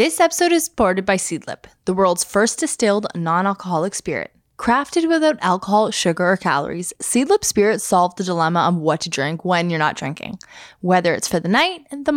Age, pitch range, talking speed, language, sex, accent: 10-29, 175-240 Hz, 185 wpm, English, female, American